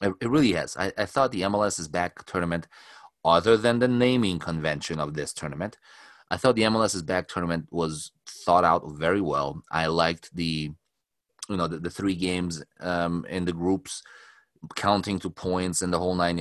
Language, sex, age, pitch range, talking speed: English, male, 30-49, 80-95 Hz, 185 wpm